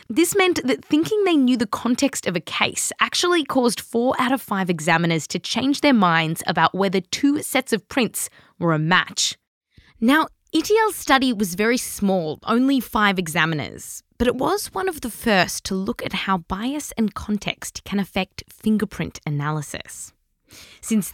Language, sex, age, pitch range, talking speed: English, female, 20-39, 165-245 Hz, 170 wpm